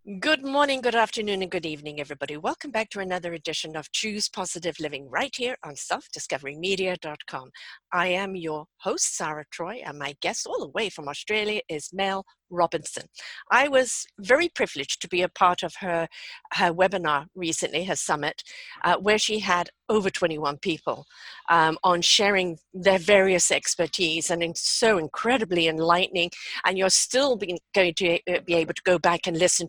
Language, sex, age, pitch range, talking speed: English, female, 50-69, 170-235 Hz, 170 wpm